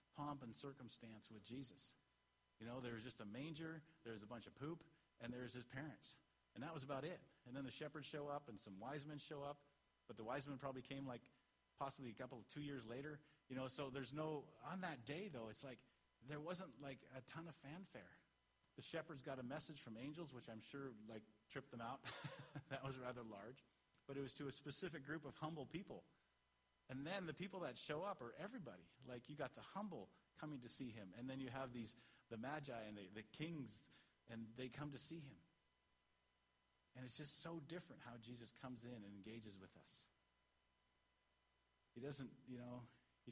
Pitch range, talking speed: 115-145 Hz, 205 wpm